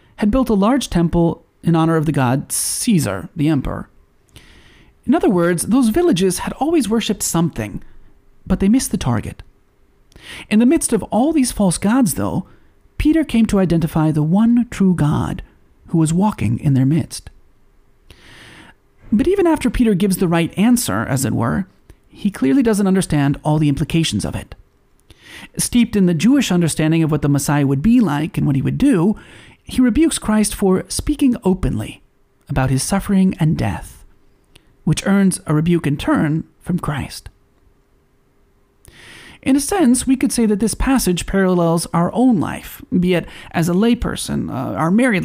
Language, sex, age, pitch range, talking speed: English, male, 40-59, 155-230 Hz, 170 wpm